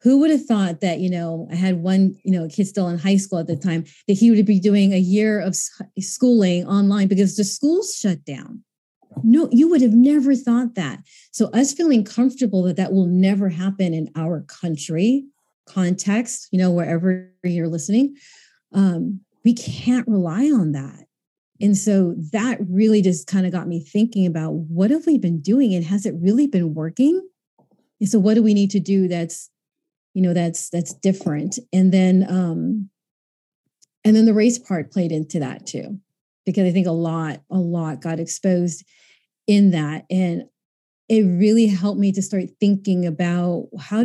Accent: American